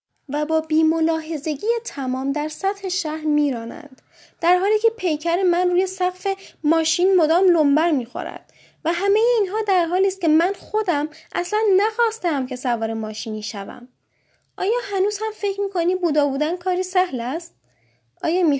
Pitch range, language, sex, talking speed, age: 240-350 Hz, Persian, female, 160 wpm, 10-29